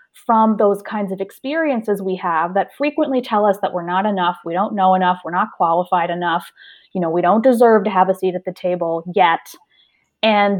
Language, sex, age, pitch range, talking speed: English, female, 30-49, 185-230 Hz, 210 wpm